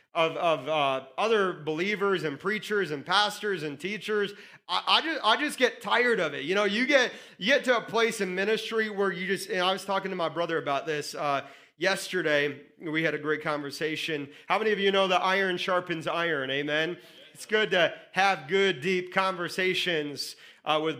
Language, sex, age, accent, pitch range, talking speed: English, male, 30-49, American, 175-230 Hz, 195 wpm